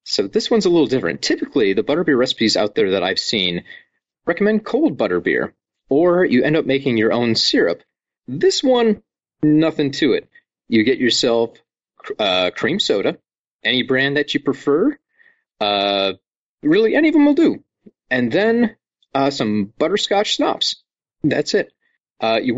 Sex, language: male, English